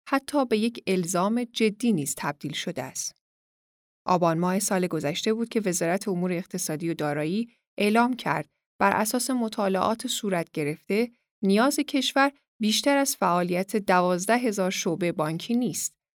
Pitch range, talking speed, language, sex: 180-240 Hz, 140 wpm, Persian, female